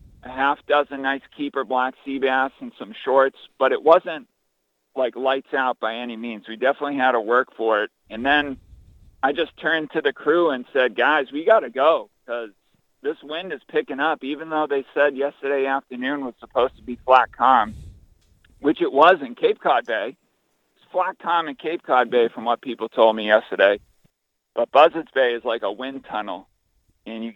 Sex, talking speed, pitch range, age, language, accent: male, 195 wpm, 120-150 Hz, 50-69, English, American